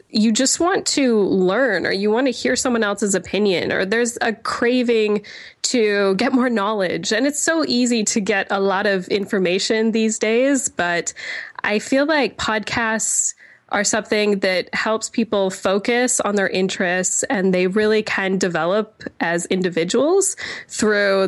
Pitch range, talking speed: 195-240 Hz, 155 wpm